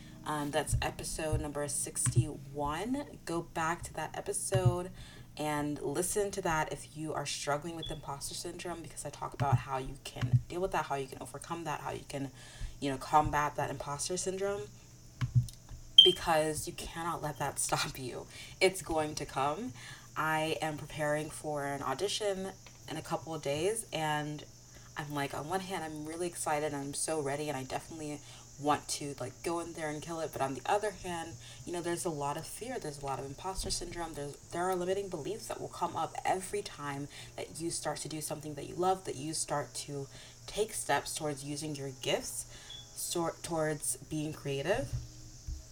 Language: English